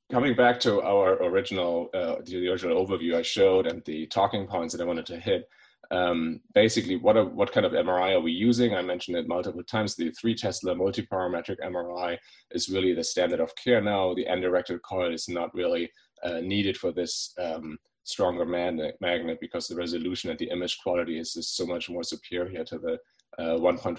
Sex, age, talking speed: male, 30-49, 200 wpm